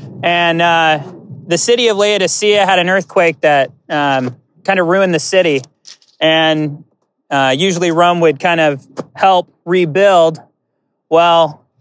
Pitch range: 145-195 Hz